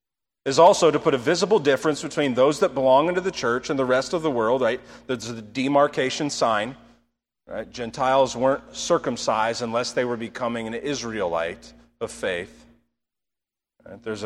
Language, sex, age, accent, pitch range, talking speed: English, male, 40-59, American, 115-145 Hz, 155 wpm